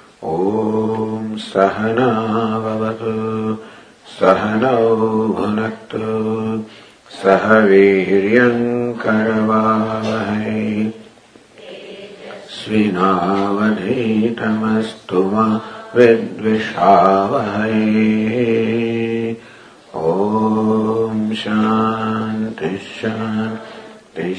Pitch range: 105-110 Hz